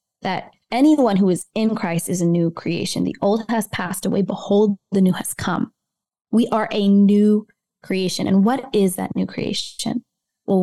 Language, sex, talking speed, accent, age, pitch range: English, female, 180 wpm, American, 20-39, 185-225 Hz